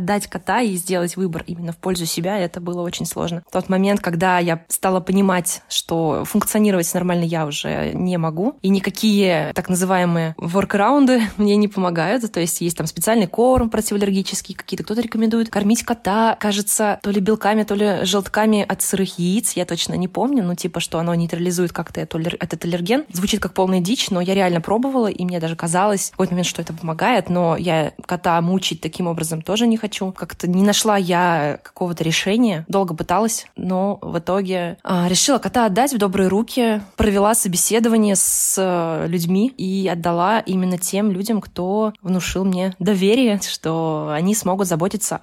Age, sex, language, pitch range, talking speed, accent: 20-39, female, Russian, 175-210 Hz, 170 wpm, native